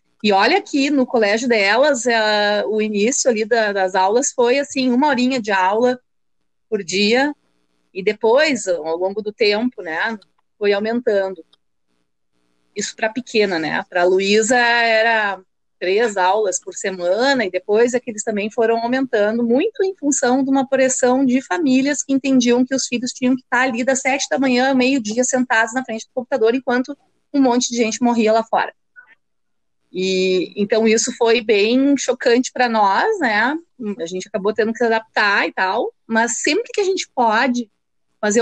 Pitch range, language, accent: 200-255 Hz, Portuguese, Brazilian